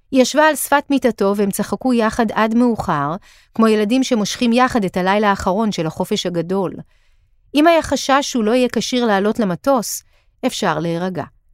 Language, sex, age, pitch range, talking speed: Hebrew, female, 40-59, 180-245 Hz, 160 wpm